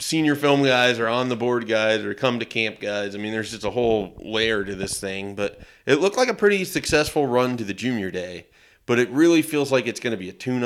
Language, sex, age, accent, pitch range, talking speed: English, male, 30-49, American, 100-115 Hz, 260 wpm